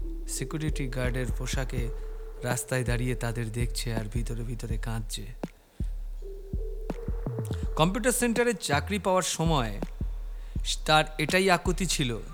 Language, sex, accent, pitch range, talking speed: Bengali, male, native, 125-170 Hz, 85 wpm